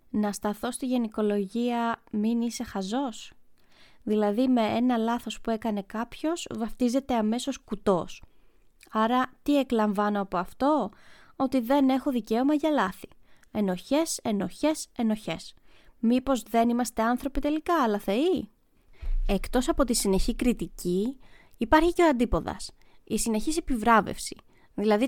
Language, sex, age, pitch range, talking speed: Greek, female, 20-39, 215-265 Hz, 120 wpm